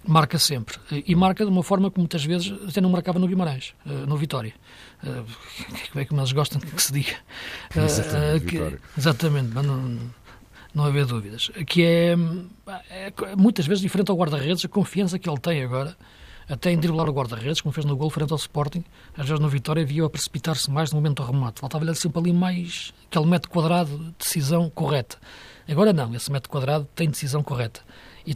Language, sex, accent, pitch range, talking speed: Portuguese, male, Portuguese, 130-170 Hz, 205 wpm